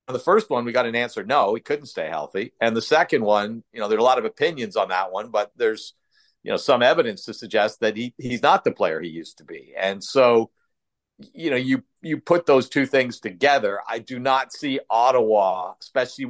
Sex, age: male, 50-69